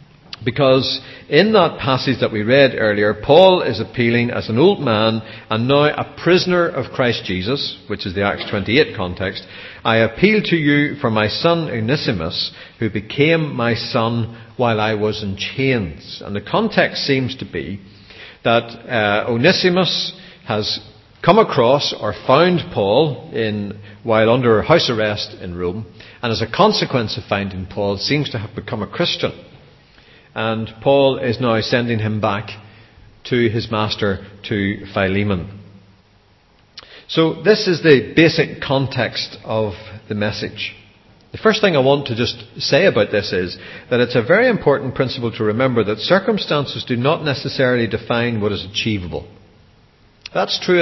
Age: 50-69